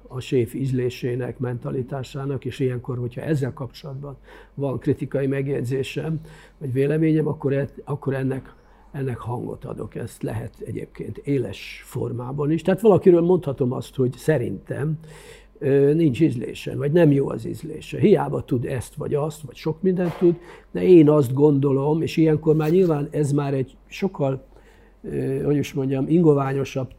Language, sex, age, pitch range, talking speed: English, male, 50-69, 125-150 Hz, 140 wpm